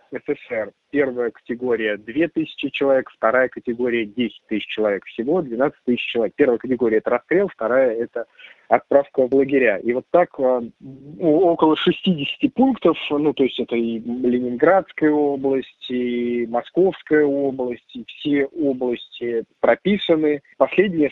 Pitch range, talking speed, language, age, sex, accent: 125-150 Hz, 125 wpm, Russian, 20-39, male, native